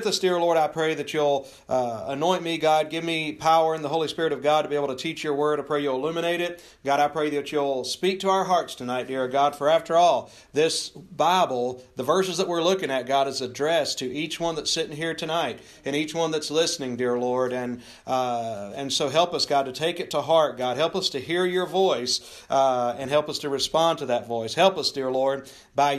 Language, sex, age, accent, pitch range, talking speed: English, male, 40-59, American, 140-180 Hz, 240 wpm